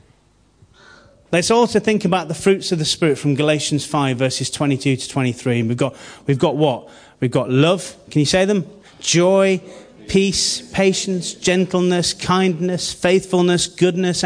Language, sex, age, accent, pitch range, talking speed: English, male, 30-49, British, 160-190 Hz, 145 wpm